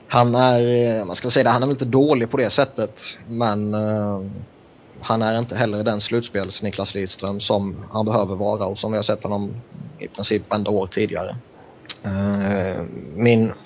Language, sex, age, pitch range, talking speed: Swedish, male, 20-39, 100-115 Hz, 170 wpm